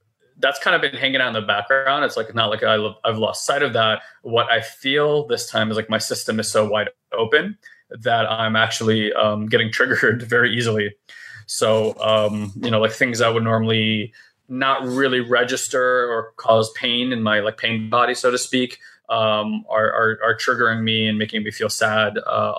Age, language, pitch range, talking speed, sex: 20-39, English, 110-125 Hz, 200 wpm, male